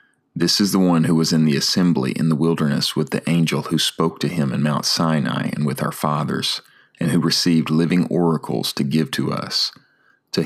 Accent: American